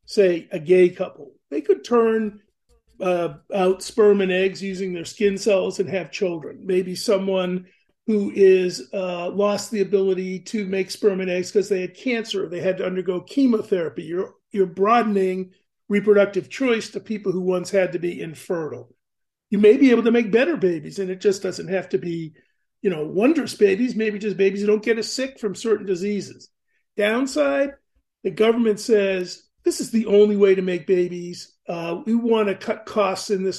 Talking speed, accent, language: 190 wpm, American, English